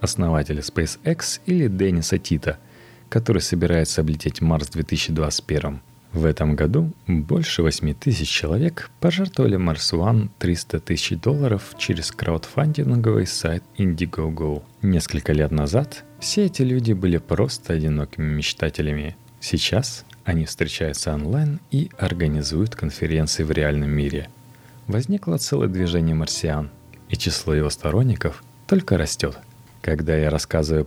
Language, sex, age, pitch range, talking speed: Russian, male, 30-49, 80-120 Hz, 115 wpm